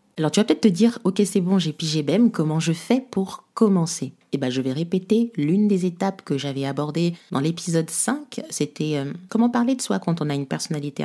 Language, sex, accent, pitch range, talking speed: French, female, French, 150-200 Hz, 230 wpm